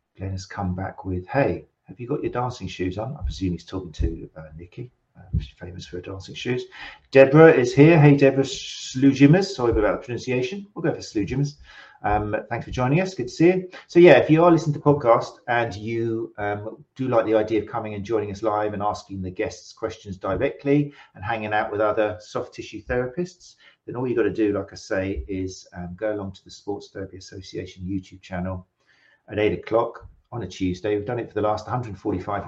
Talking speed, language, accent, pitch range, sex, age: 215 wpm, English, British, 95-125 Hz, male, 50-69